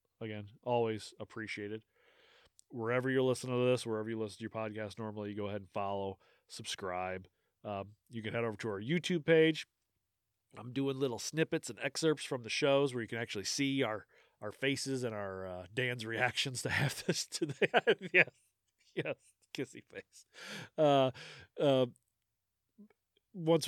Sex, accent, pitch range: male, American, 110-155 Hz